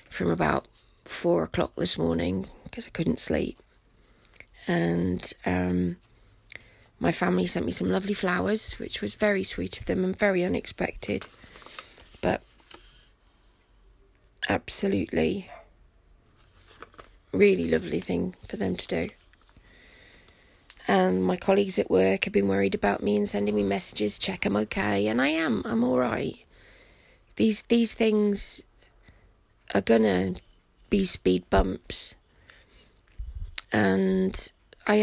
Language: English